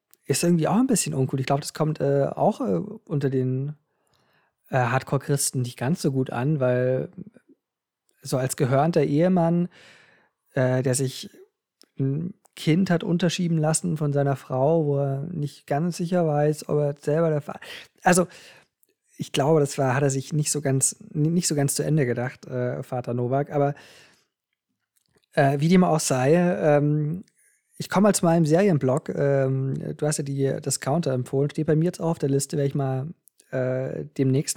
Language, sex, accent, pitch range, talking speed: German, male, German, 130-160 Hz, 175 wpm